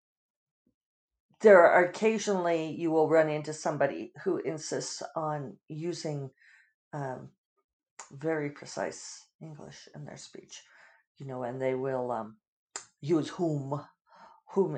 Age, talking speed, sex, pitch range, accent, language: 50-69, 115 wpm, female, 155-210 Hz, American, English